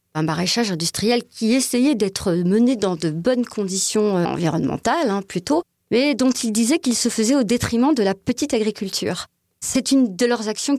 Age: 40-59